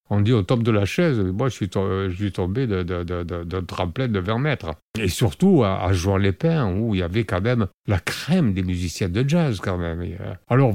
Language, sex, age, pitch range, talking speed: French, male, 50-69, 95-130 Hz, 245 wpm